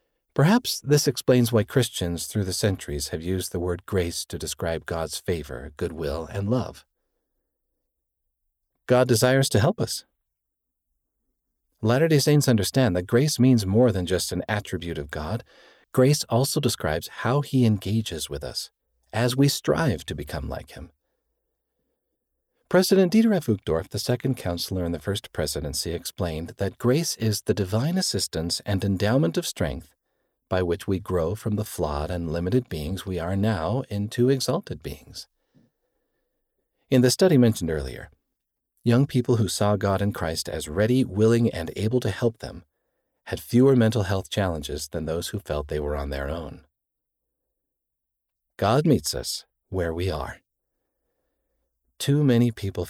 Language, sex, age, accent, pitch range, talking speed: English, male, 50-69, American, 85-125 Hz, 150 wpm